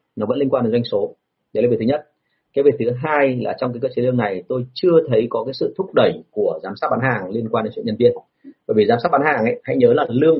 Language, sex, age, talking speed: Vietnamese, male, 30-49, 305 wpm